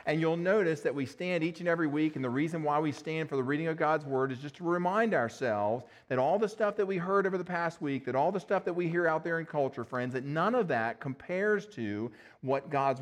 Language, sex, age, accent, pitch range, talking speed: English, male, 40-59, American, 125-165 Hz, 265 wpm